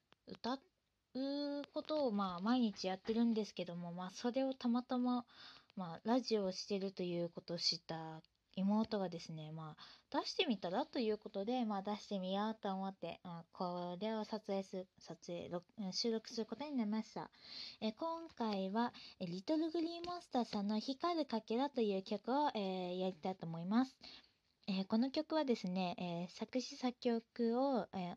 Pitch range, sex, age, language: 185-250 Hz, female, 20-39, Japanese